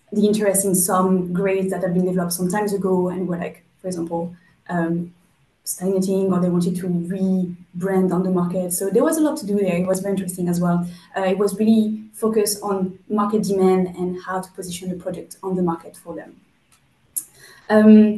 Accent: French